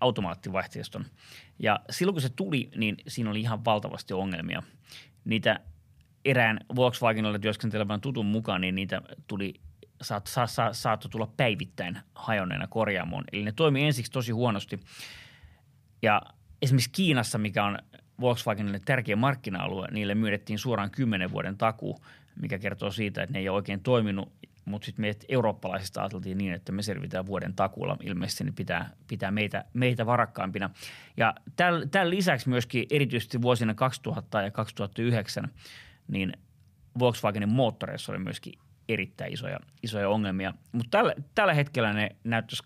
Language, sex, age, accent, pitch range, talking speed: Finnish, male, 30-49, native, 100-125 Hz, 140 wpm